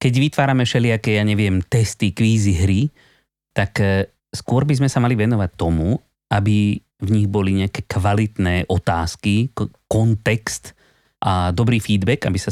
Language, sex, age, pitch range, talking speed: Slovak, male, 30-49, 95-130 Hz, 140 wpm